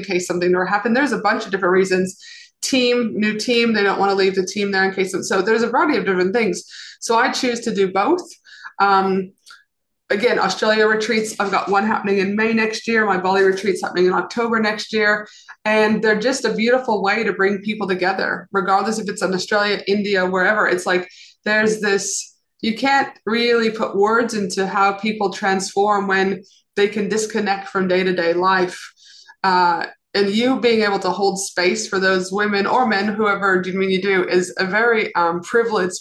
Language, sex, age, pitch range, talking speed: English, female, 20-39, 190-220 Hz, 190 wpm